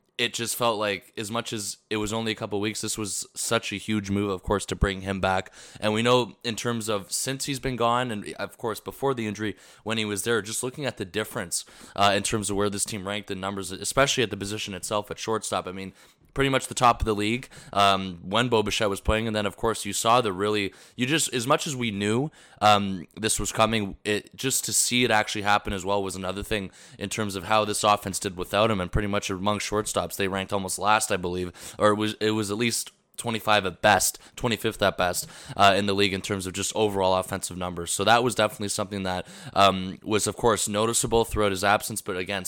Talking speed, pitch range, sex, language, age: 245 wpm, 95-110 Hz, male, English, 20-39